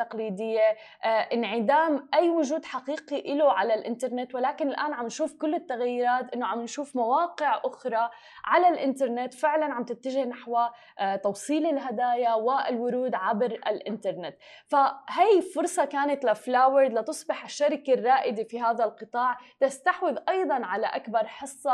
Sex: female